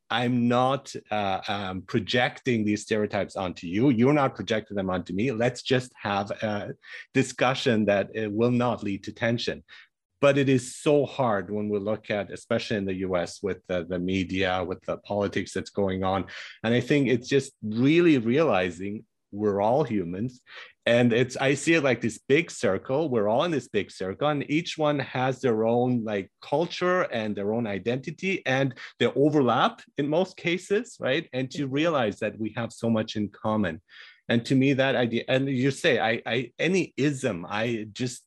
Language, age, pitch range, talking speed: English, 40-59, 105-135 Hz, 185 wpm